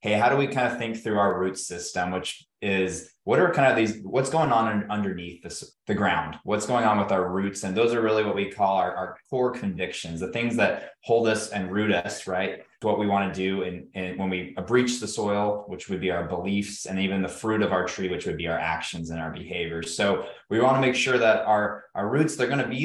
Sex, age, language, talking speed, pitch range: male, 20-39, English, 245 wpm, 95-115 Hz